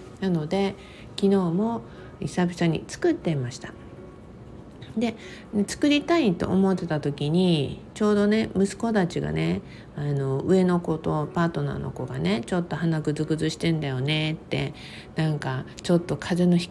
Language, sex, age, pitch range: Japanese, female, 50-69, 150-195 Hz